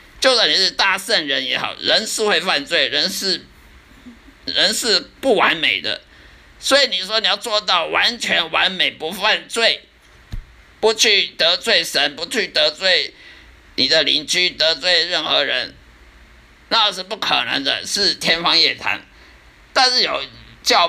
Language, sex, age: Chinese, male, 50-69